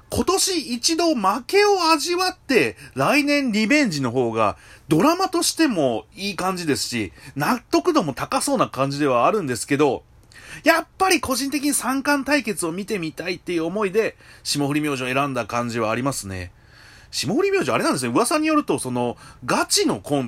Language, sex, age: Japanese, male, 30-49